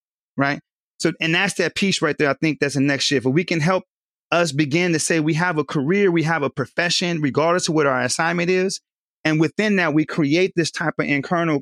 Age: 30-49